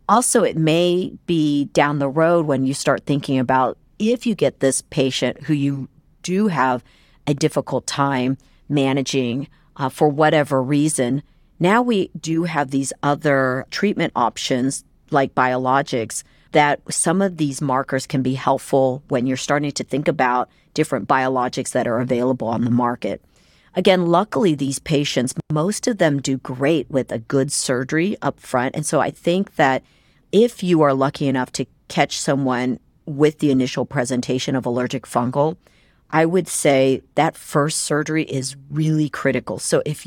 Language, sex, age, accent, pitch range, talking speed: English, female, 40-59, American, 130-155 Hz, 160 wpm